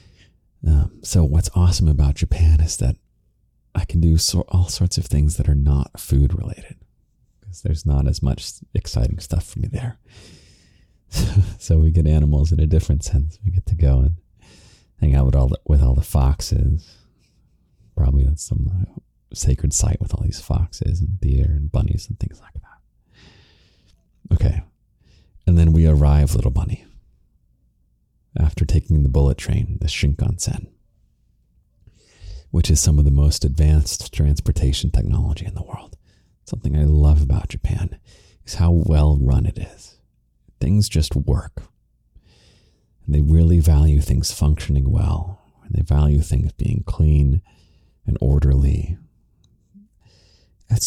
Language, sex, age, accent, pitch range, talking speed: English, male, 30-49, American, 75-95 Hz, 150 wpm